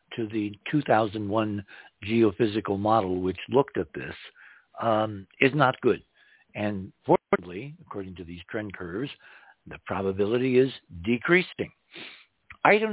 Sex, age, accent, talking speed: male, 60-79, American, 115 wpm